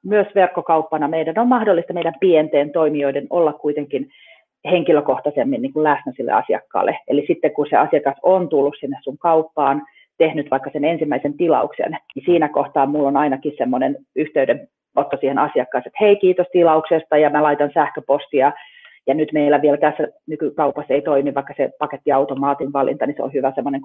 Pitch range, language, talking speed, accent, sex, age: 145-195 Hz, Finnish, 165 wpm, native, female, 30-49